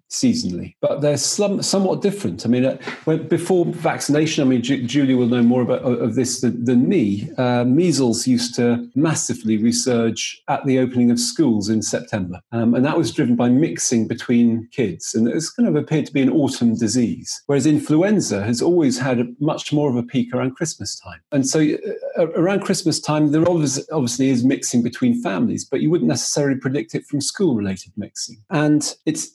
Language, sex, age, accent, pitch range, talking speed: English, male, 40-59, British, 115-145 Hz, 185 wpm